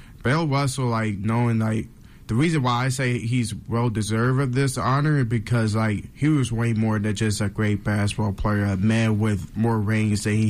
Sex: male